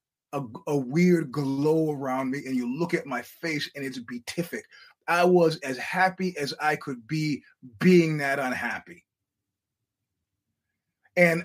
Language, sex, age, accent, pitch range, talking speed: English, male, 30-49, American, 130-170 Hz, 140 wpm